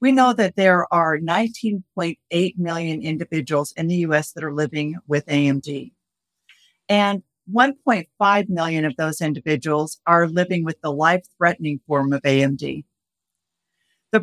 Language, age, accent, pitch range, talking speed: English, 50-69, American, 155-190 Hz, 130 wpm